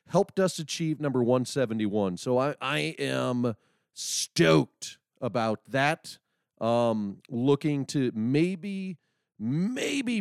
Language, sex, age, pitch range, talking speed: English, male, 40-59, 115-175 Hz, 100 wpm